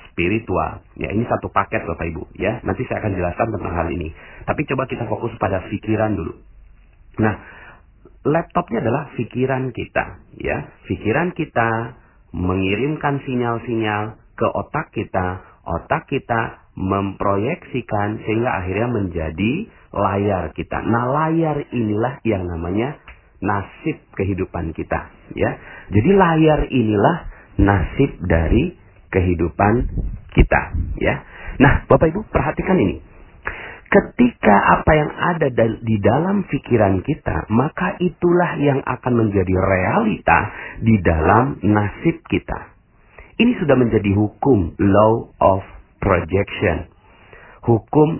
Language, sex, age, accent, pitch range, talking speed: Indonesian, male, 40-59, native, 95-125 Hz, 115 wpm